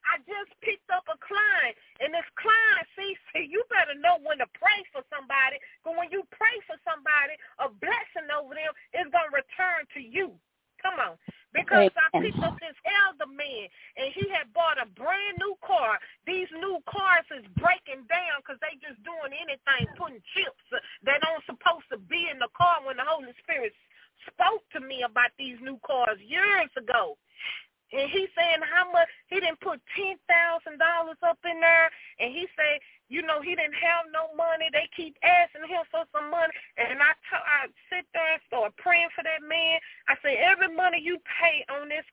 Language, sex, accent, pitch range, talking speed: English, female, American, 295-370 Hz, 190 wpm